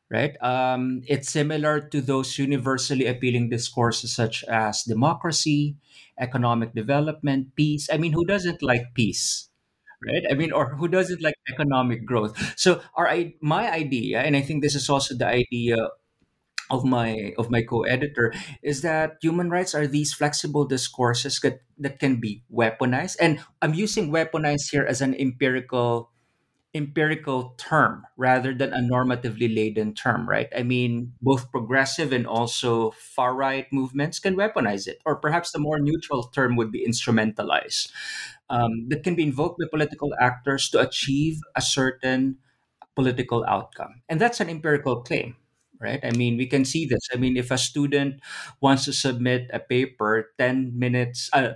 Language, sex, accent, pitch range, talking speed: English, male, Filipino, 120-150 Hz, 160 wpm